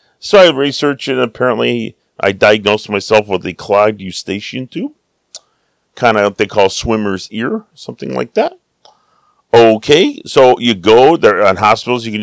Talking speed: 155 wpm